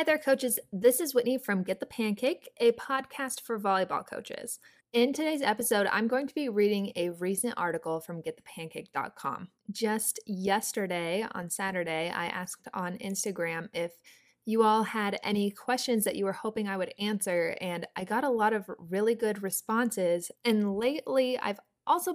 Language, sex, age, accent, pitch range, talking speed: English, female, 20-39, American, 180-225 Hz, 170 wpm